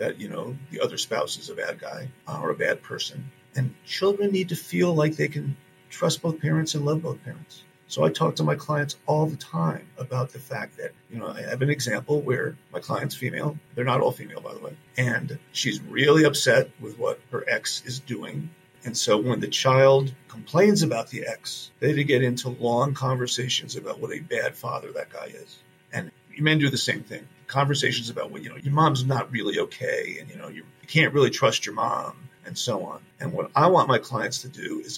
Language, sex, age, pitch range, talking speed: English, male, 40-59, 130-175 Hz, 225 wpm